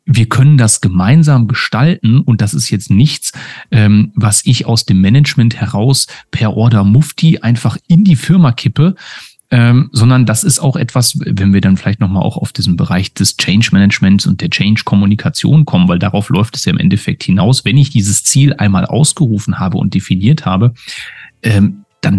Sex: male